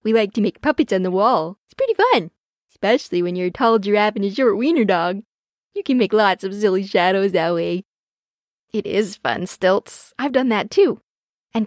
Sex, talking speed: female, 205 wpm